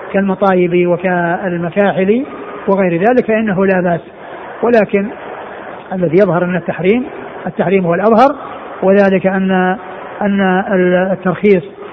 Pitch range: 180-210 Hz